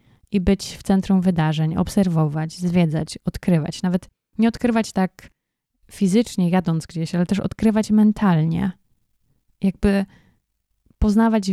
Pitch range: 175-205 Hz